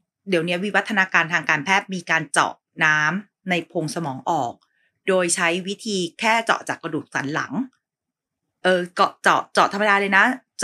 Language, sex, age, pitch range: Thai, female, 30-49, 170-210 Hz